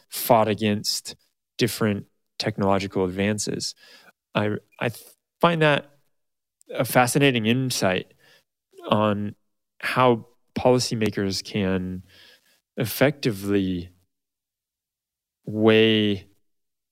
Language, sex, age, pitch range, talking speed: English, male, 20-39, 100-125 Hz, 65 wpm